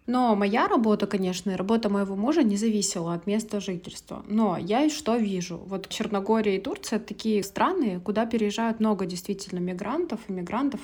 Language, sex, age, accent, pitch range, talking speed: Russian, female, 20-39, native, 180-220 Hz, 170 wpm